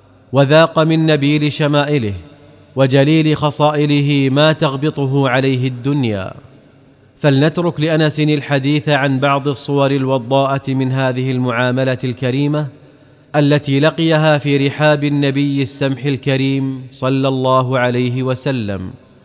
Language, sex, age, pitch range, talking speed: Arabic, male, 30-49, 135-150 Hz, 100 wpm